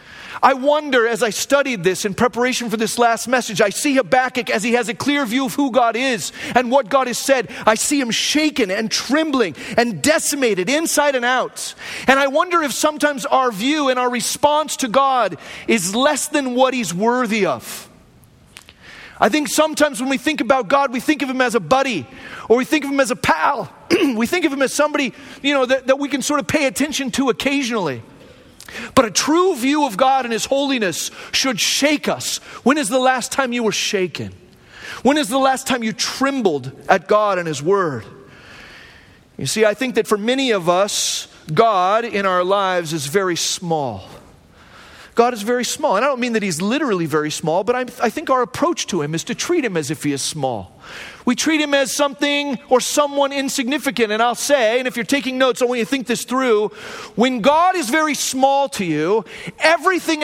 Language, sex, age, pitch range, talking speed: English, male, 40-59, 215-280 Hz, 210 wpm